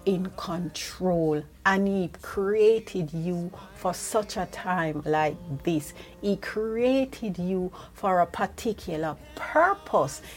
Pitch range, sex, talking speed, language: 175-240 Hz, female, 110 wpm, English